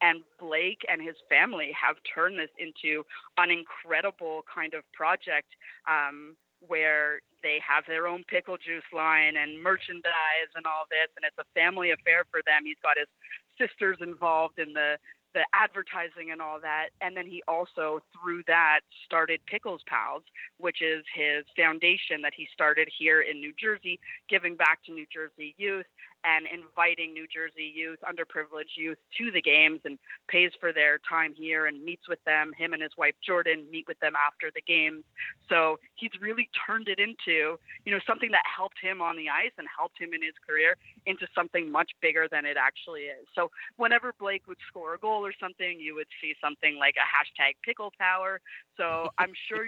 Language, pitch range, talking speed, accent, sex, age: English, 155-180 Hz, 185 wpm, American, female, 30-49